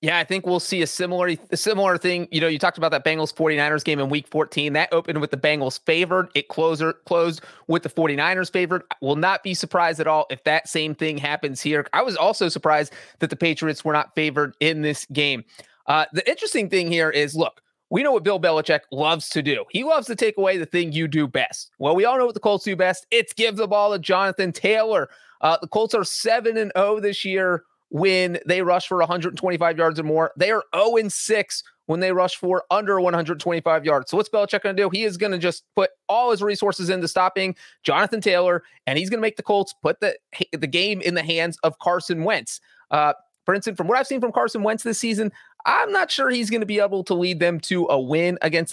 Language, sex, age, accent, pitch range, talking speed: English, male, 30-49, American, 160-200 Hz, 235 wpm